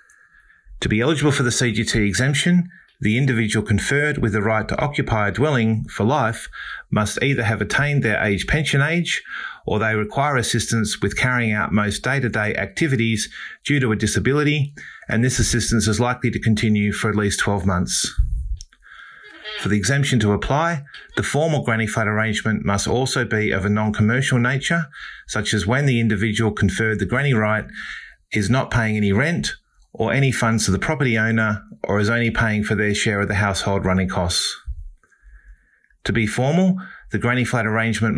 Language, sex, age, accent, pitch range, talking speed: English, male, 30-49, Australian, 105-130 Hz, 175 wpm